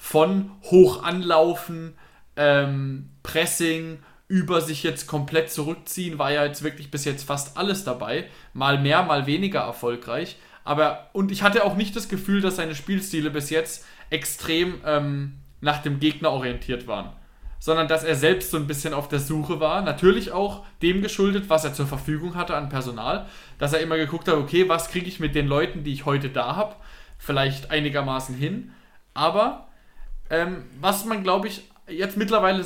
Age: 20-39